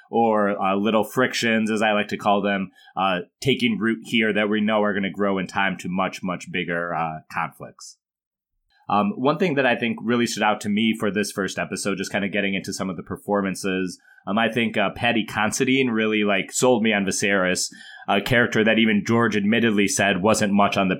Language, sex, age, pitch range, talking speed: English, male, 30-49, 100-115 Hz, 215 wpm